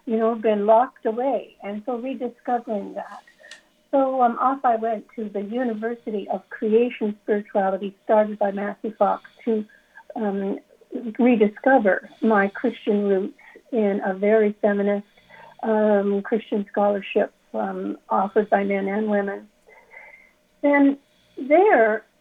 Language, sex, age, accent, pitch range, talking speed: English, female, 60-79, American, 210-265 Hz, 120 wpm